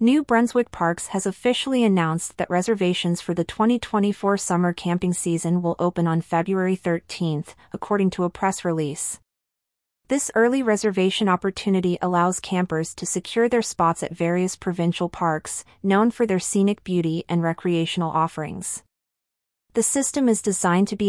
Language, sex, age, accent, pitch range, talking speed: English, female, 30-49, American, 170-205 Hz, 150 wpm